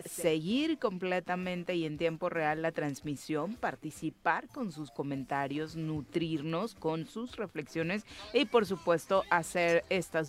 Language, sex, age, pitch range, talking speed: Spanish, female, 30-49, 155-180 Hz, 120 wpm